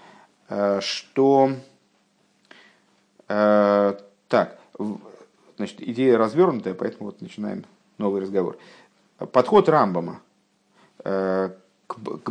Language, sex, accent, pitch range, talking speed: Russian, male, native, 100-165 Hz, 65 wpm